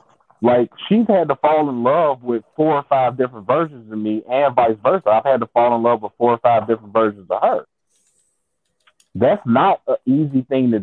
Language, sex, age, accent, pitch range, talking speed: English, male, 30-49, American, 120-165 Hz, 210 wpm